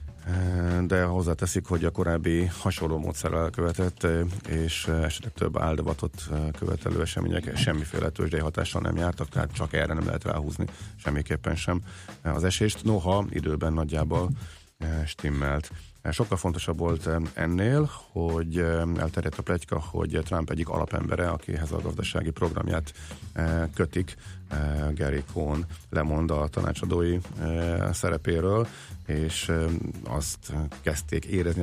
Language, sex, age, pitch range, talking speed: Hungarian, male, 40-59, 80-95 Hz, 110 wpm